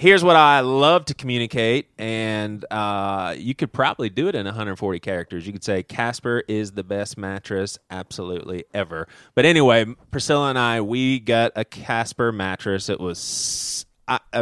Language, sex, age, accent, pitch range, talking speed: English, male, 30-49, American, 100-140 Hz, 160 wpm